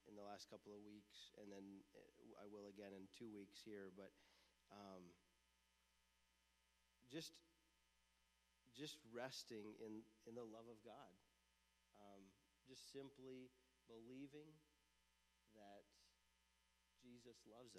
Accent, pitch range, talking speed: American, 95-120 Hz, 110 wpm